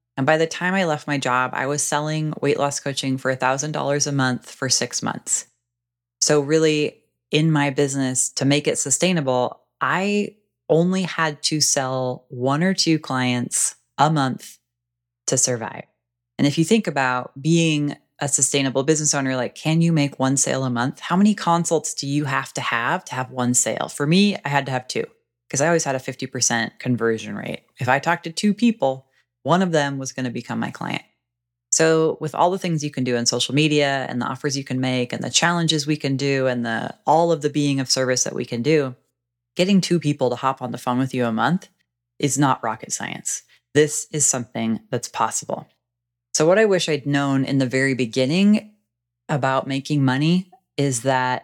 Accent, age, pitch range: American, 20-39, 125-155 Hz